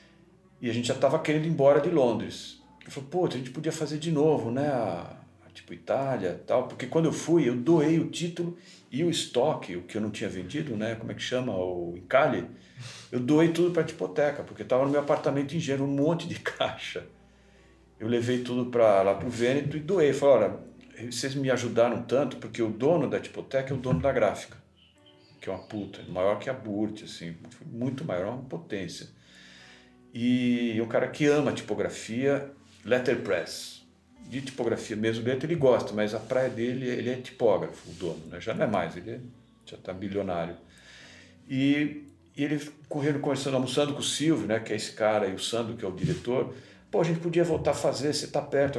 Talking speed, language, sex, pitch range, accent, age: 210 wpm, Portuguese, male, 115-155 Hz, Brazilian, 50-69